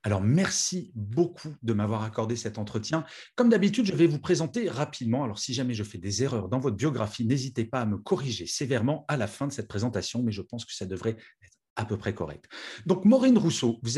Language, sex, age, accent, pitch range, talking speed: French, male, 40-59, French, 110-155 Hz, 225 wpm